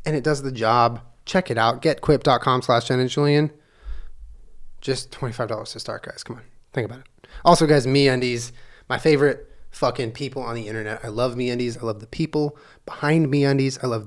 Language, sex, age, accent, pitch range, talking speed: English, male, 30-49, American, 115-145 Hz, 190 wpm